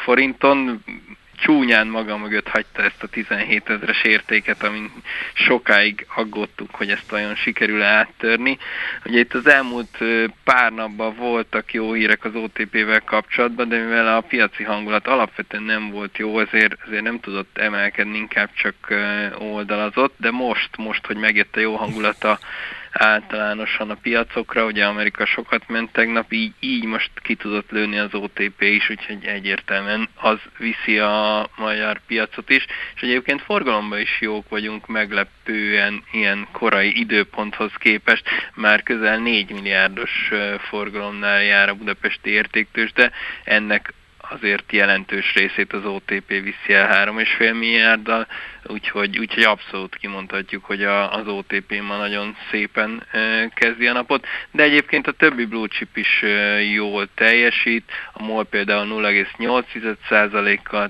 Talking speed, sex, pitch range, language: 135 wpm, male, 105-115 Hz, Hungarian